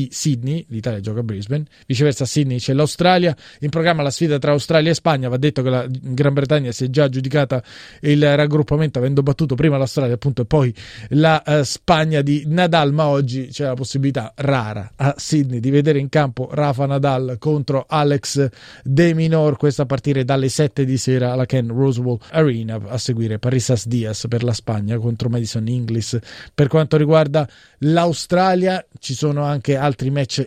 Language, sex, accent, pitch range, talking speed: Italian, male, native, 130-150 Hz, 180 wpm